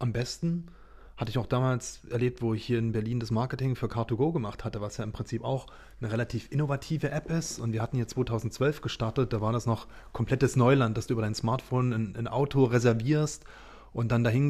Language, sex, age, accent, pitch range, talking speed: German, male, 30-49, German, 115-140 Hz, 215 wpm